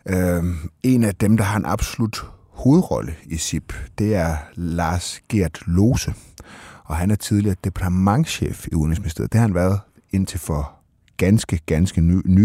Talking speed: 150 wpm